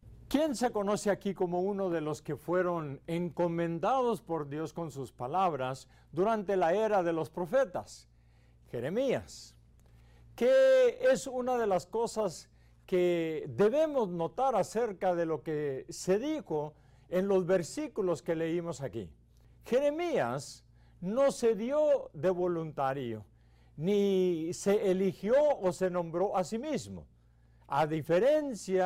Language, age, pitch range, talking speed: English, 50-69, 140-210 Hz, 125 wpm